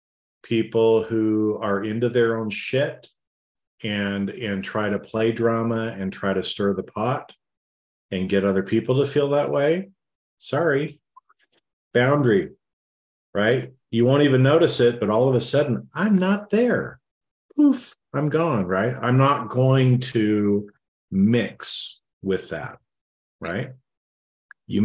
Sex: male